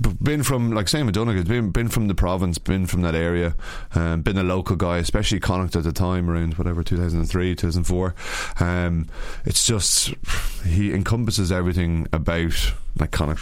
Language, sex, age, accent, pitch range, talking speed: English, male, 20-39, Irish, 85-100 Hz, 195 wpm